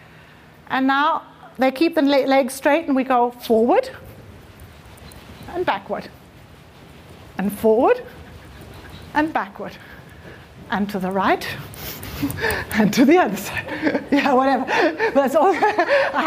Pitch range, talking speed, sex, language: 275-385 Hz, 115 wpm, female, English